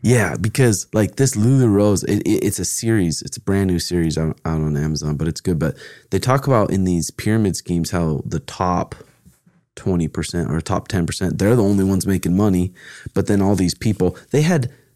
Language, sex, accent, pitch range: English, male, American, 85-115 Hz